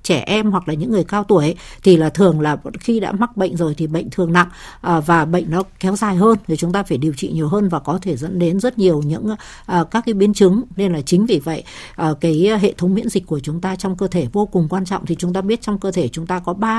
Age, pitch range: 60-79, 165-205 Hz